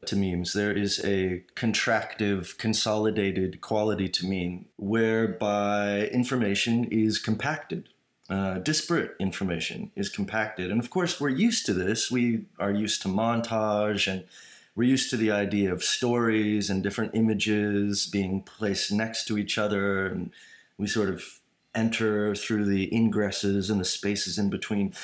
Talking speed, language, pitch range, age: 145 wpm, English, 100-120 Hz, 30-49